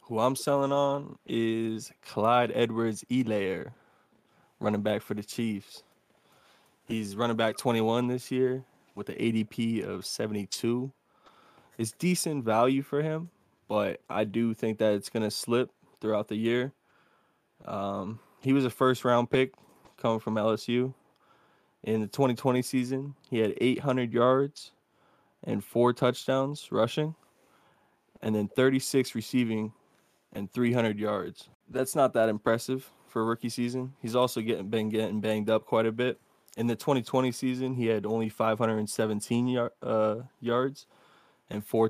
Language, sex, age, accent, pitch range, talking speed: English, male, 20-39, American, 110-130 Hz, 145 wpm